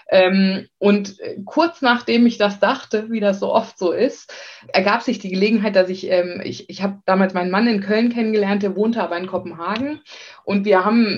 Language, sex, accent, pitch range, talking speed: German, female, German, 180-215 Hz, 200 wpm